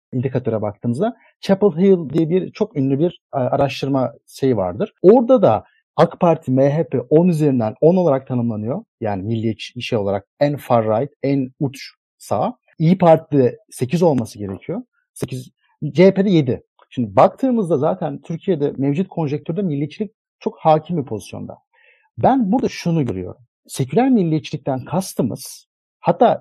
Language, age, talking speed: Turkish, 50-69, 135 wpm